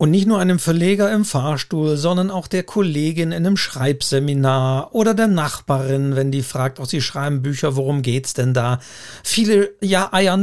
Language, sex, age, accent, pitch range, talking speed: German, male, 50-69, German, 135-180 Hz, 180 wpm